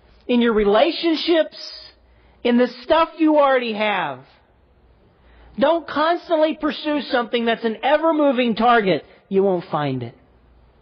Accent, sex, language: American, male, English